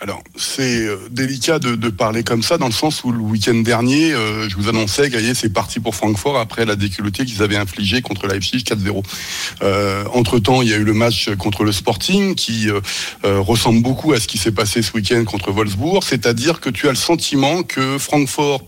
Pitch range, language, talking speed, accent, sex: 105-125 Hz, French, 220 wpm, French, male